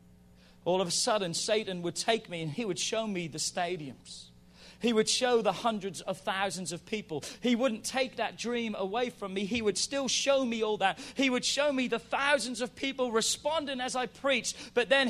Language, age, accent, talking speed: English, 40-59, British, 210 wpm